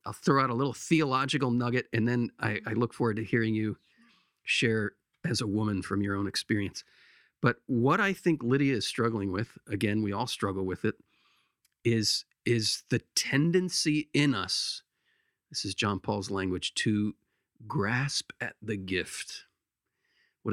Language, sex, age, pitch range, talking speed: English, male, 40-59, 105-135 Hz, 160 wpm